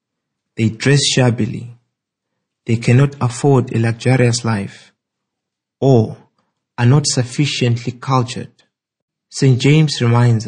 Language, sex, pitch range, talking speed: English, male, 110-135 Hz, 95 wpm